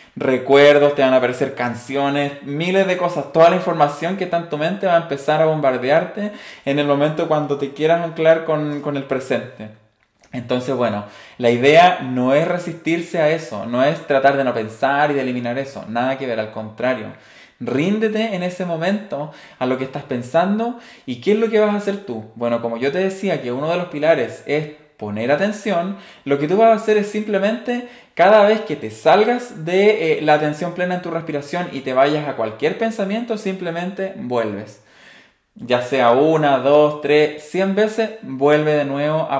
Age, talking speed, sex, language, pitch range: 20-39, 195 wpm, male, Spanish, 130-175 Hz